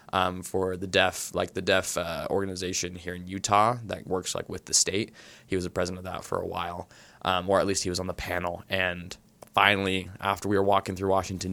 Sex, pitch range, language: male, 90-100 Hz, English